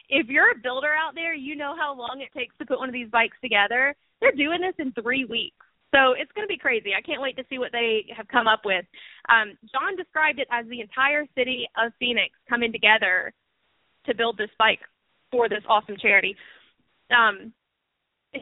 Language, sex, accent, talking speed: English, female, American, 205 wpm